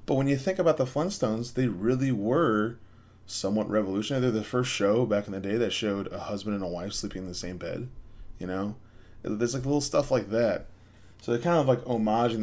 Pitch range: 100-120 Hz